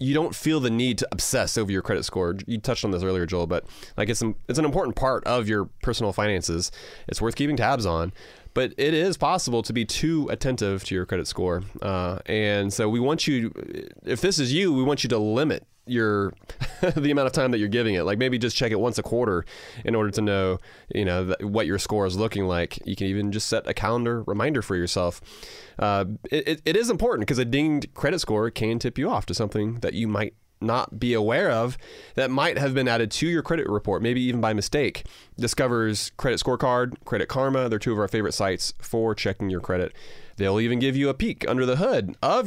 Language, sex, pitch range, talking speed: English, male, 100-130 Hz, 225 wpm